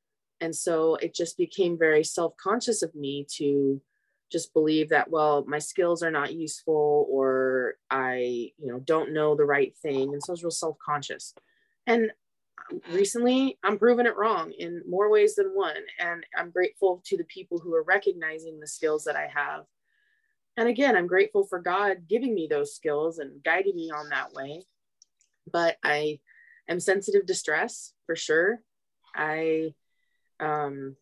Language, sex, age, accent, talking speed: English, female, 20-39, American, 165 wpm